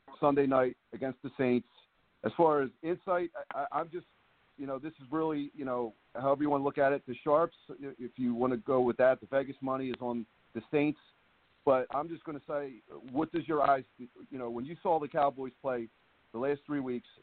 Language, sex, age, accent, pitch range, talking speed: English, male, 40-59, American, 125-155 Hz, 220 wpm